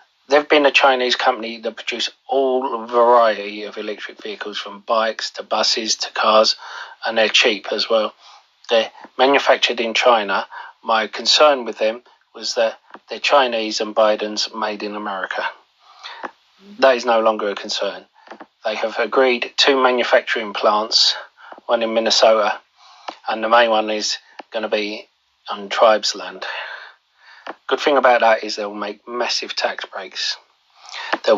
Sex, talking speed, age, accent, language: male, 145 wpm, 30-49, British, English